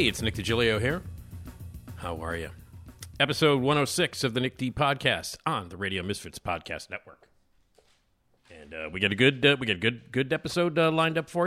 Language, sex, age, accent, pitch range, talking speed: English, male, 50-69, American, 100-140 Hz, 200 wpm